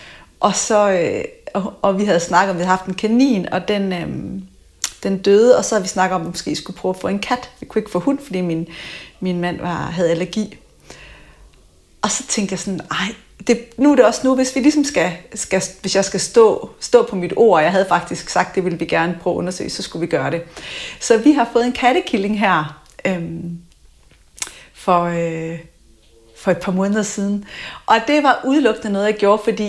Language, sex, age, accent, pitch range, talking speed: Danish, female, 30-49, native, 180-250 Hz, 220 wpm